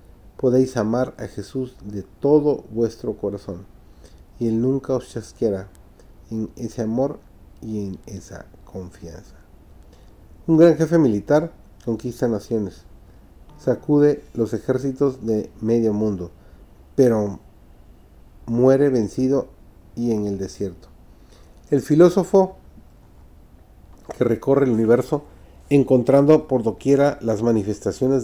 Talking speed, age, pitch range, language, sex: 105 wpm, 40-59, 100-135 Hz, Spanish, male